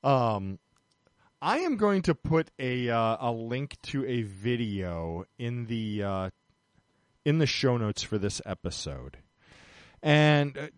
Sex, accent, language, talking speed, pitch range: male, American, English, 135 wpm, 115-155 Hz